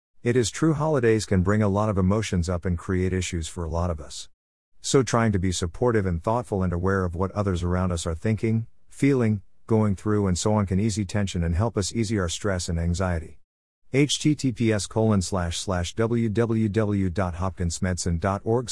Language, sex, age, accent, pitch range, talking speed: English, male, 50-69, American, 90-110 Hz, 185 wpm